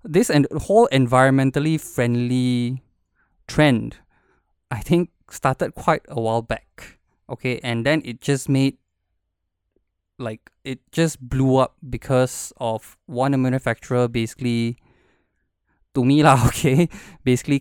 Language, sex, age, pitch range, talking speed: English, male, 20-39, 115-145 Hz, 115 wpm